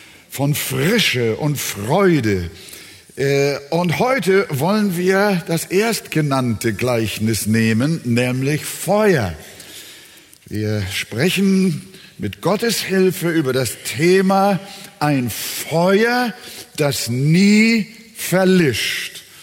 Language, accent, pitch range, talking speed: German, German, 115-190 Hz, 85 wpm